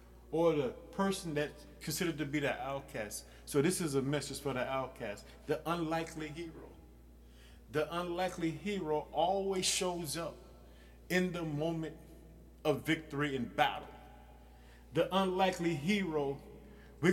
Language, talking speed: English, 130 wpm